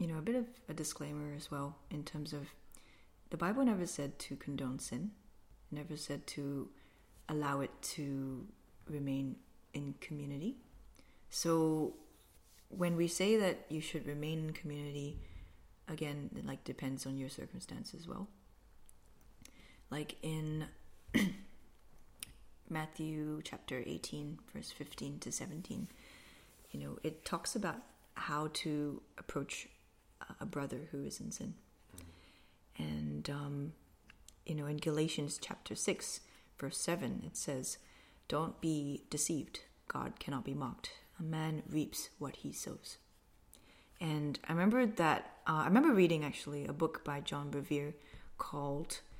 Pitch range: 140-160 Hz